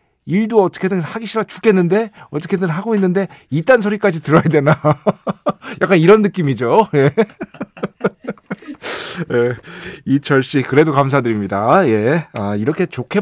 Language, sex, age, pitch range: Korean, male, 40-59, 115-185 Hz